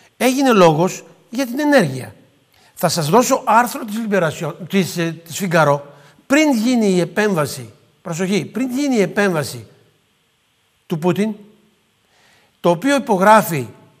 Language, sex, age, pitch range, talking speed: Greek, male, 60-79, 155-220 Hz, 100 wpm